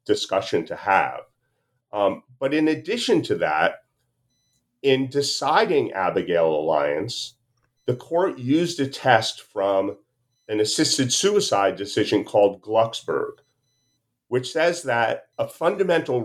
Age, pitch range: 40-59, 115-145 Hz